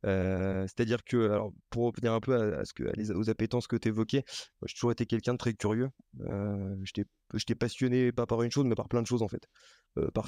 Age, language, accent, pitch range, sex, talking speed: 20-39, French, French, 105-120 Hz, male, 245 wpm